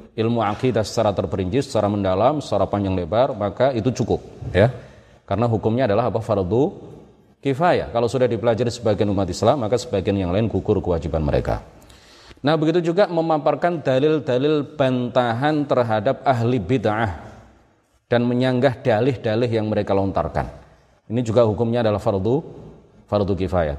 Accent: native